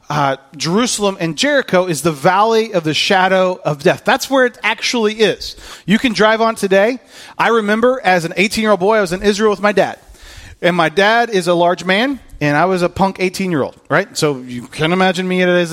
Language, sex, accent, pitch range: English, male, American, 170-245 Hz